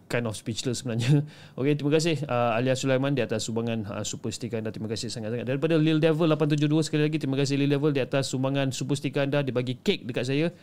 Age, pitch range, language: 30-49, 115-150 Hz, Malay